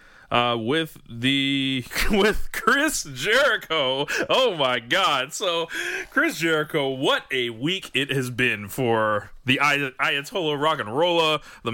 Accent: American